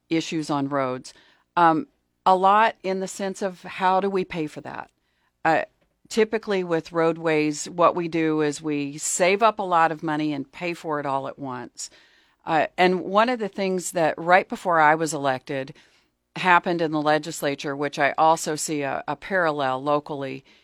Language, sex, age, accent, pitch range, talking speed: English, female, 40-59, American, 150-185 Hz, 180 wpm